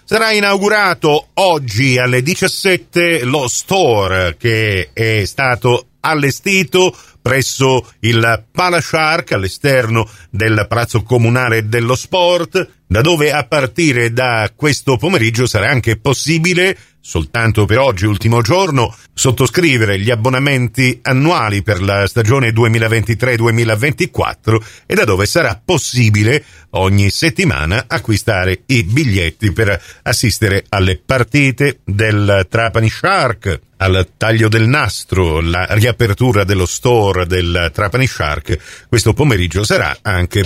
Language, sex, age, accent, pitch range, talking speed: Italian, male, 50-69, native, 105-135 Hz, 110 wpm